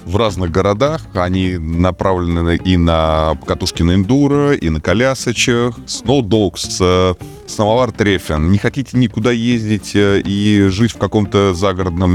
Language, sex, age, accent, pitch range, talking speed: Russian, male, 20-39, native, 85-110 Hz, 125 wpm